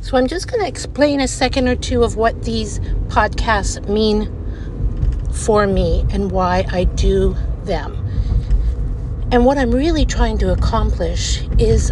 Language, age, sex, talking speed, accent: English, 50-69, female, 150 wpm, American